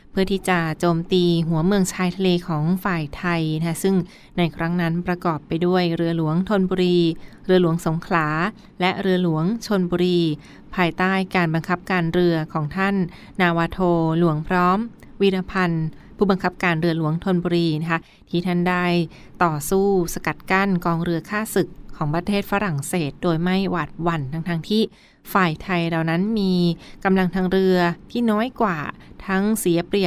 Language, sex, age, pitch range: Thai, female, 20-39, 165-190 Hz